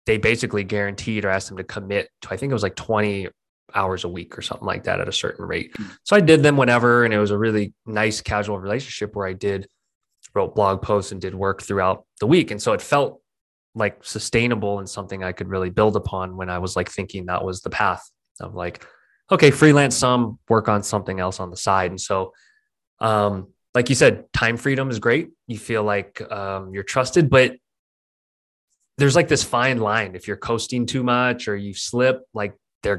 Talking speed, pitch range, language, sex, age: 215 wpm, 95-125 Hz, English, male, 20-39